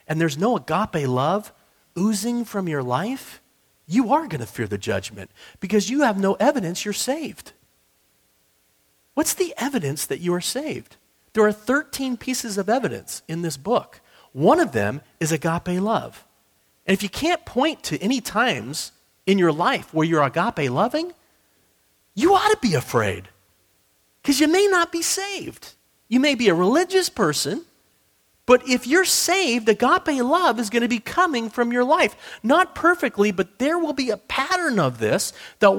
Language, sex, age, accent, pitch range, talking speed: English, male, 40-59, American, 180-290 Hz, 170 wpm